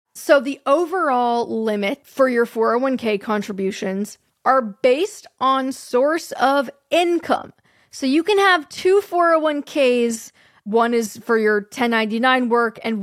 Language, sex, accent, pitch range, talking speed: English, female, American, 220-280 Hz, 125 wpm